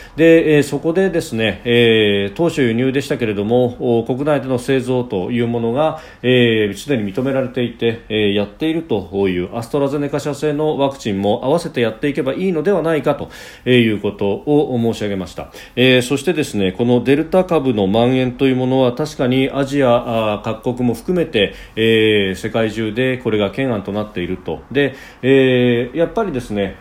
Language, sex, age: Japanese, male, 40-59